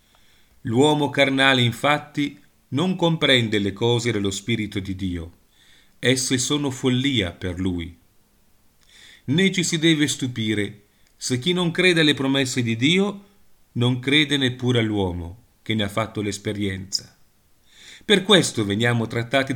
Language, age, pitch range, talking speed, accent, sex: Italian, 40-59, 110-160 Hz, 130 wpm, native, male